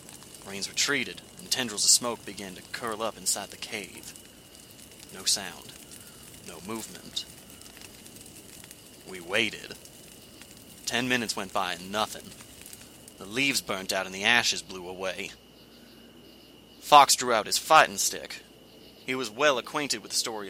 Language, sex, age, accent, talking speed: English, male, 30-49, American, 140 wpm